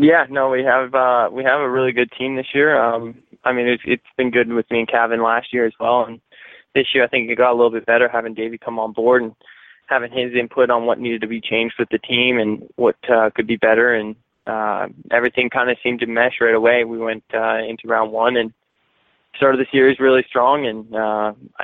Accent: American